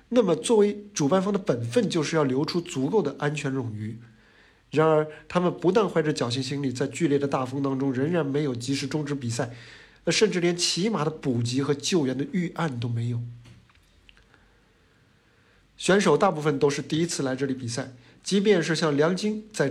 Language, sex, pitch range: Chinese, male, 130-170 Hz